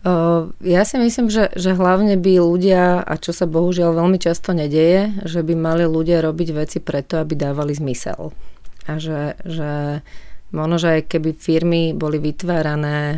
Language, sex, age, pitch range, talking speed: Slovak, female, 30-49, 150-165 Hz, 160 wpm